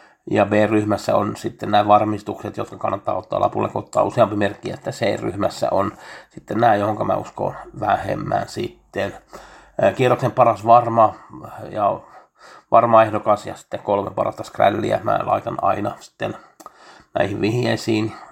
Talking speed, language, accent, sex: 140 wpm, Finnish, native, male